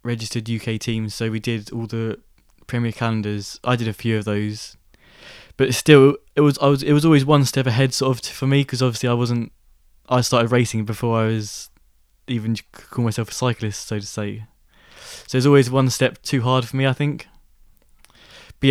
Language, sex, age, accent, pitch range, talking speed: English, male, 20-39, British, 110-125 Hz, 200 wpm